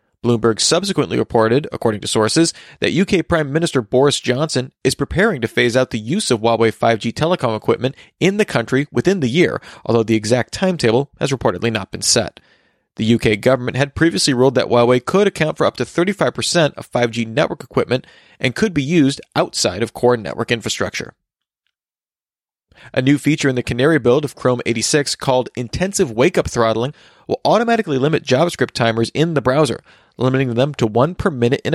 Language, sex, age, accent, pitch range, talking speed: English, male, 30-49, American, 115-155 Hz, 180 wpm